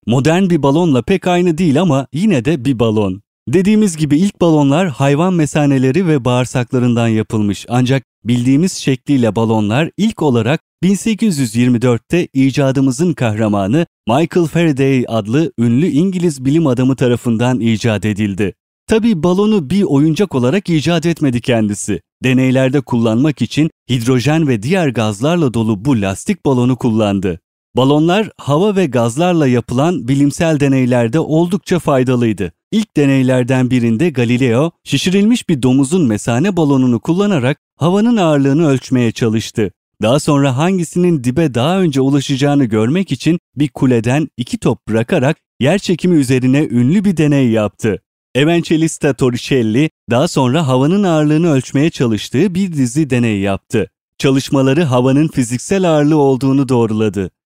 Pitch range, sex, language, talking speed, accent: 120-165 Hz, male, Turkish, 125 wpm, native